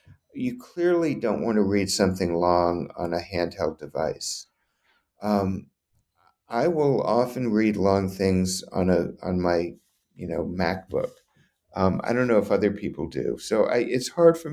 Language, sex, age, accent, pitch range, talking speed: English, male, 60-79, American, 95-120 Hz, 160 wpm